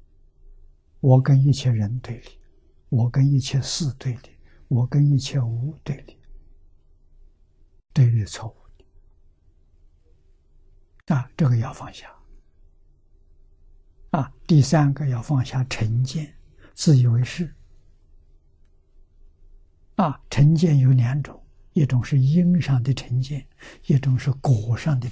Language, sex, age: Chinese, male, 60-79